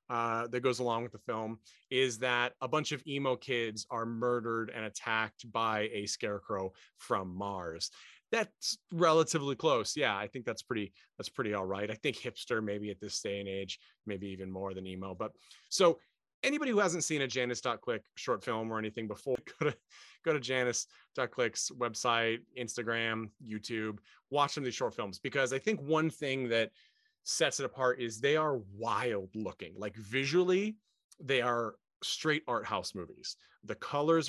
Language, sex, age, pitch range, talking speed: English, male, 30-49, 115-140 Hz, 175 wpm